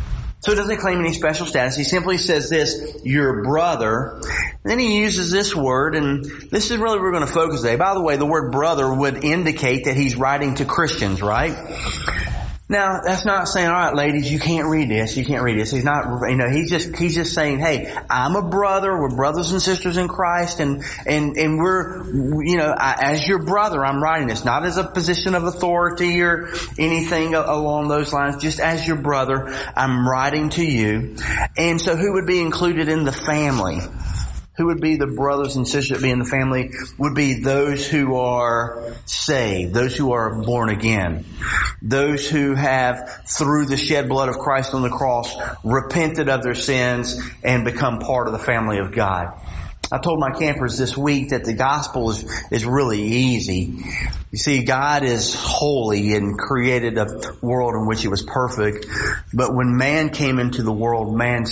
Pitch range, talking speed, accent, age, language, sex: 120-160 Hz, 195 wpm, American, 30-49, English, male